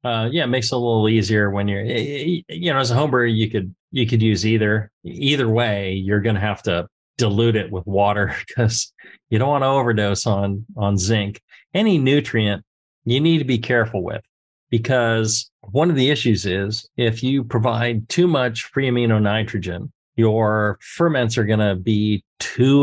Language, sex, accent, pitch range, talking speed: English, male, American, 105-125 Hz, 185 wpm